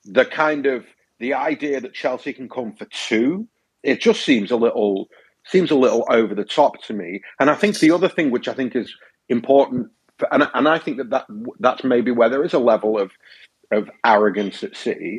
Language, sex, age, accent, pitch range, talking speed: English, male, 40-59, British, 120-195 Hz, 215 wpm